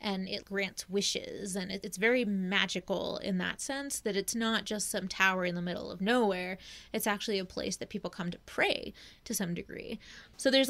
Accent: American